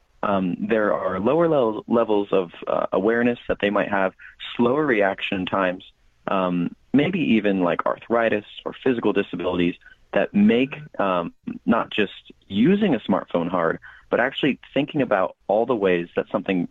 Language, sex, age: English, male, 30-49